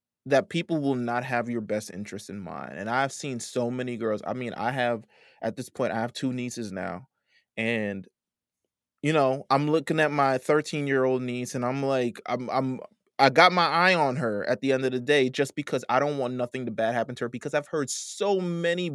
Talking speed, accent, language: 230 wpm, American, English